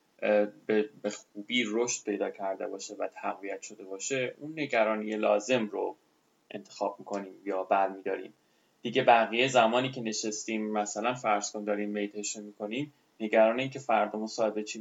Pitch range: 105-140 Hz